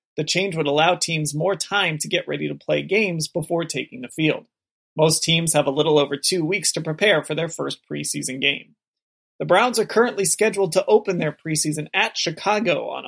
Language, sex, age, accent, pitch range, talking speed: English, male, 30-49, American, 150-180 Hz, 200 wpm